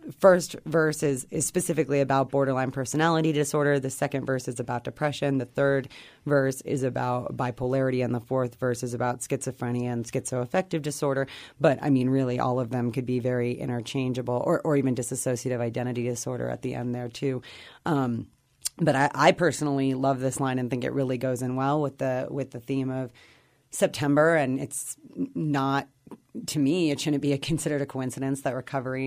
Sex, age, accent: female, 30-49, American